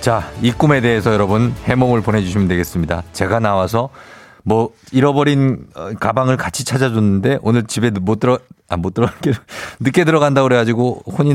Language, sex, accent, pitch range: Korean, male, native, 105-150 Hz